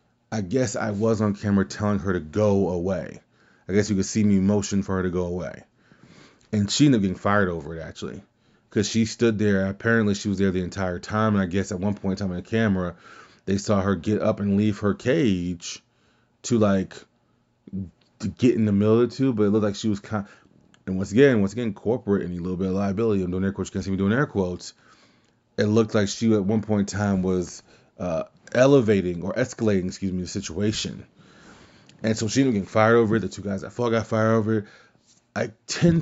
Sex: male